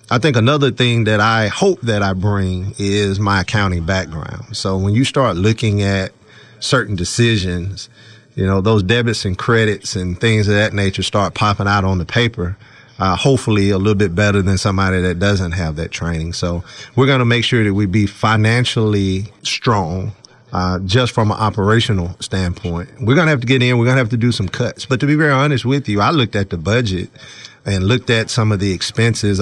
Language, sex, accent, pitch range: English, male, American, 95-120 Hz